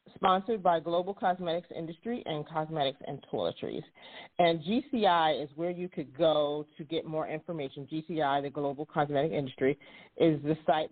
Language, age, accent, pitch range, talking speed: English, 40-59, American, 150-175 Hz, 155 wpm